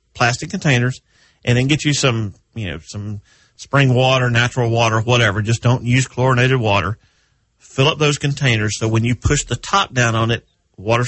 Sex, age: male, 40-59